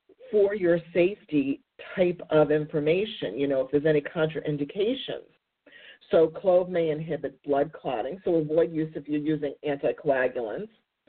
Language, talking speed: English, 135 wpm